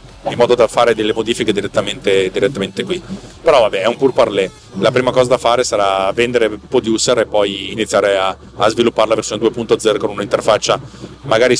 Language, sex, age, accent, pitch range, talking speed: Italian, male, 30-49, native, 110-140 Hz, 185 wpm